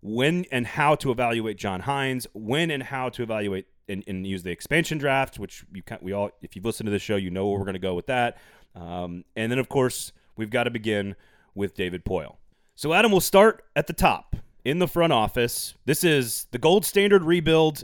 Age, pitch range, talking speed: 30-49, 100-145 Hz, 220 wpm